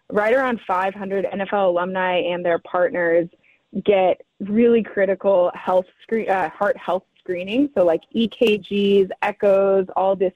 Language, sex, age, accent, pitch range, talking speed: English, female, 20-39, American, 180-215 Hz, 135 wpm